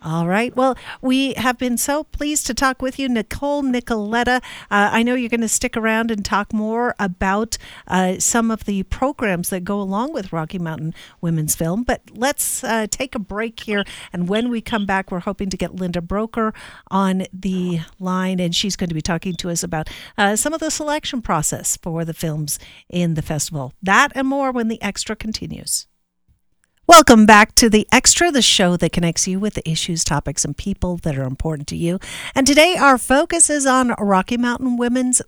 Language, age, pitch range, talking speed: English, 50-69, 185-250 Hz, 200 wpm